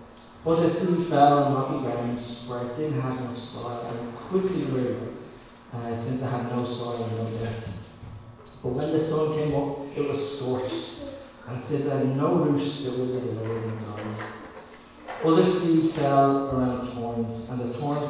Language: English